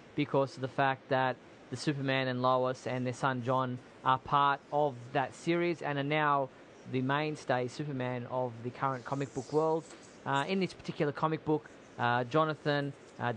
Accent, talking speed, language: Australian, 175 wpm, English